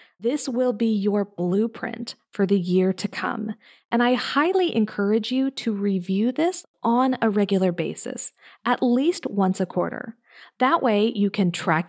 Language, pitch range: English, 190-260 Hz